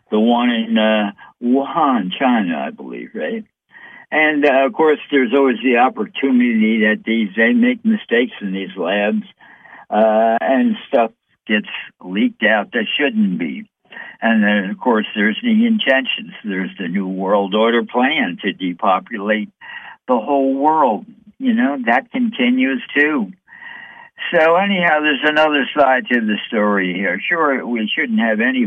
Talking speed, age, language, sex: 150 wpm, 60-79, English, male